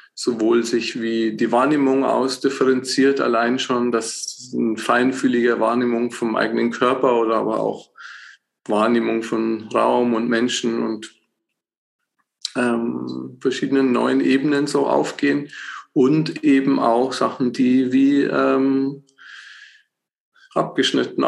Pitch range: 115-135 Hz